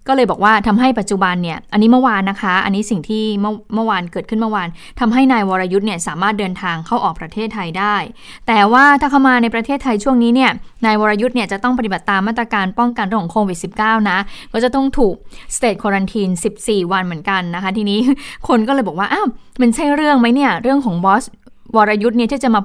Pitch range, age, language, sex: 195-240 Hz, 20-39, Thai, female